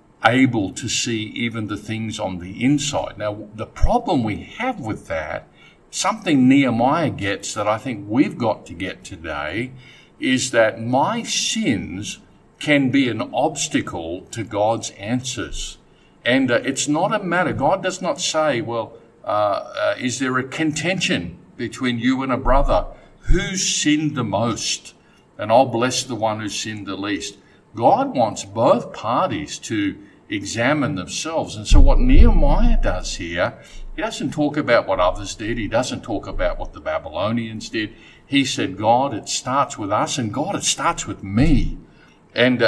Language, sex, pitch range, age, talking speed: English, male, 120-175 Hz, 50-69, 160 wpm